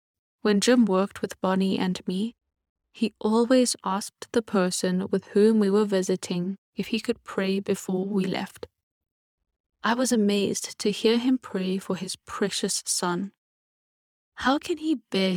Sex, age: female, 10-29